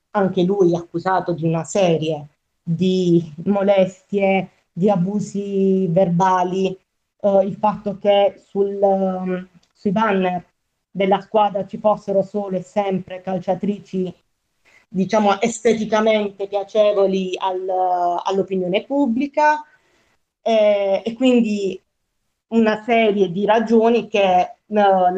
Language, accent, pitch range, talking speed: Italian, native, 185-225 Hz, 100 wpm